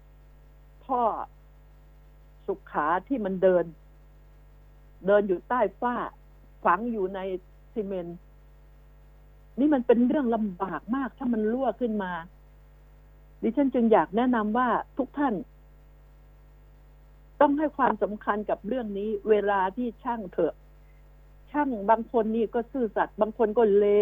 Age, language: 60-79, Thai